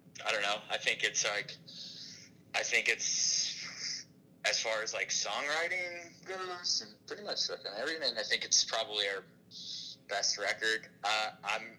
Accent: American